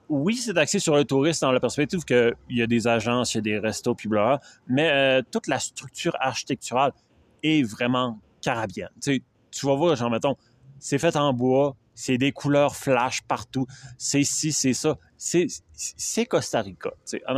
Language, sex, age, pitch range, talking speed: French, male, 30-49, 120-155 Hz, 185 wpm